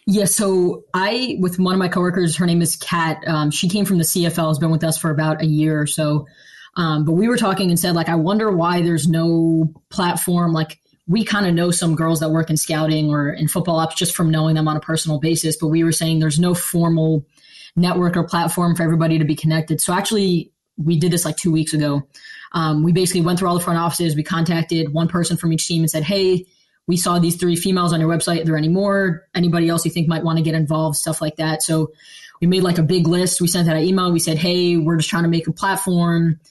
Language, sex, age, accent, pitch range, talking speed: English, female, 20-39, American, 160-180 Hz, 255 wpm